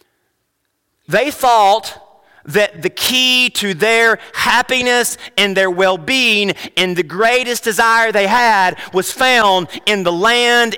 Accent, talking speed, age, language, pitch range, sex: American, 130 wpm, 30-49, English, 180-235 Hz, male